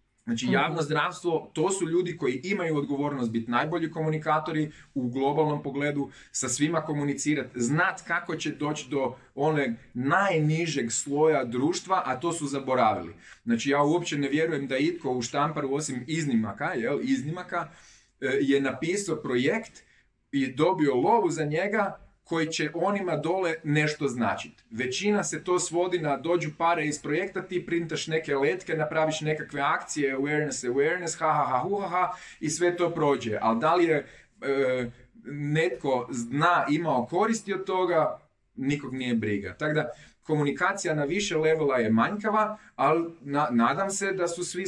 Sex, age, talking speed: male, 30-49, 155 wpm